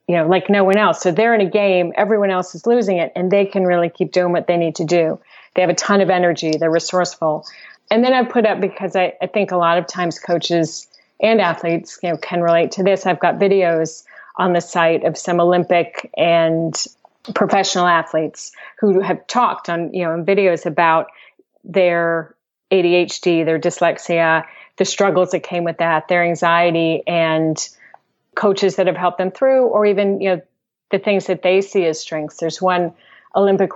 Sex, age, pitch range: female, 40-59, 170-195 Hz